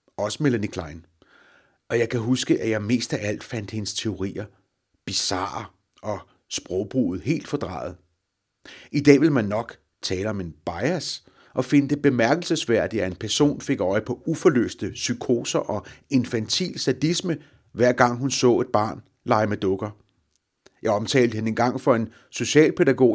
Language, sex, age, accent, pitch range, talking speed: Danish, male, 30-49, native, 105-140 Hz, 160 wpm